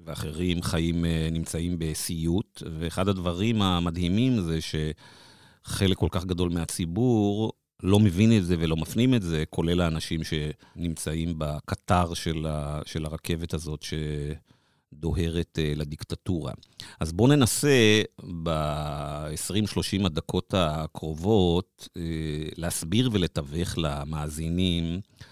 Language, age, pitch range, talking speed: Hebrew, 50-69, 80-100 Hz, 90 wpm